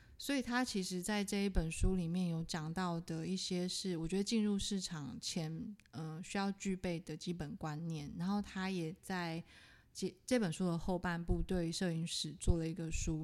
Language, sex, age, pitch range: Chinese, female, 20-39, 170-195 Hz